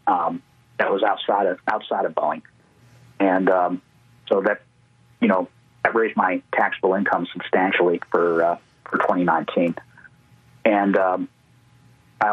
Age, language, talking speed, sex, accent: 40-59, English, 130 wpm, male, American